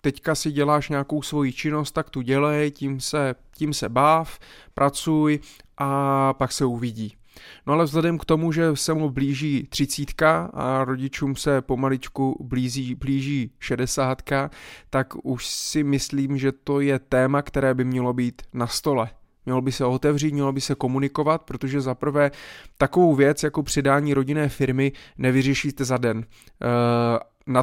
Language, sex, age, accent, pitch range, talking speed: Czech, male, 20-39, native, 125-150 Hz, 150 wpm